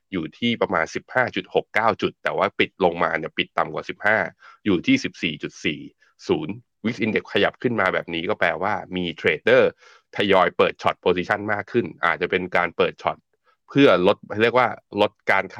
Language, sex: Thai, male